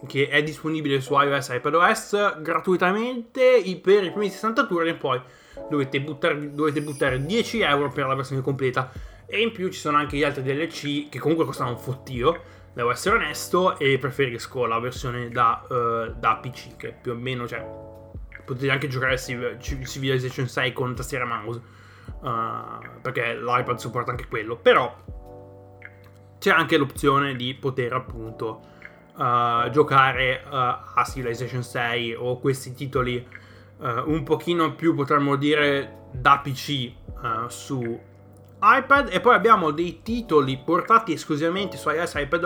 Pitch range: 125-165 Hz